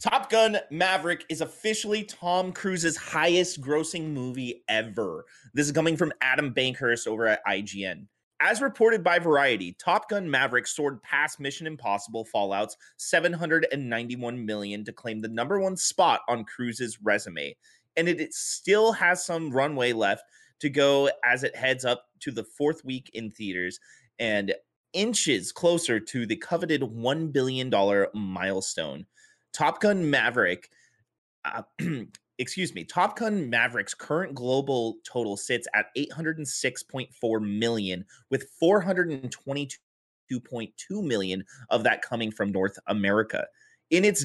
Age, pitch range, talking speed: 30-49, 110-165 Hz, 135 wpm